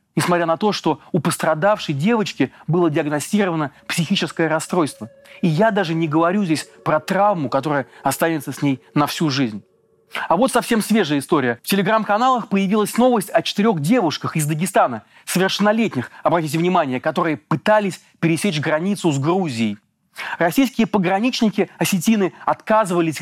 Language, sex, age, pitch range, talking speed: Russian, male, 30-49, 155-205 Hz, 135 wpm